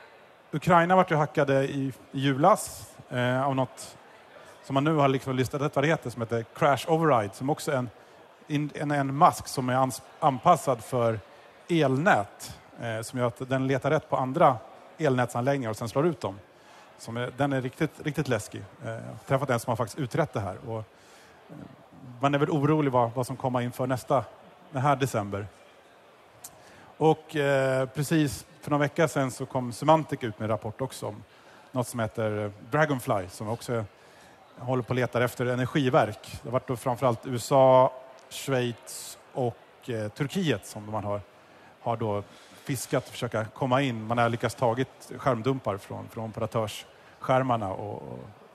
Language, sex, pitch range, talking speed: Swedish, male, 115-140 Hz, 170 wpm